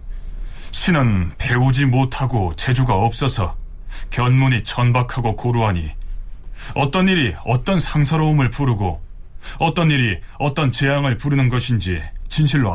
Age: 30-49